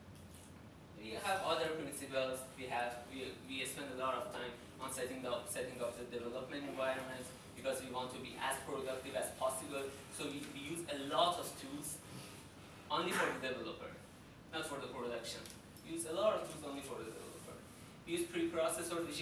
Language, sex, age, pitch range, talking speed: English, male, 20-39, 120-145 Hz, 185 wpm